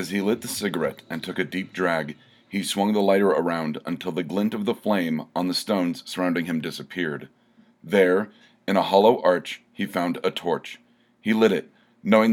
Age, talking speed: 40-59, 195 wpm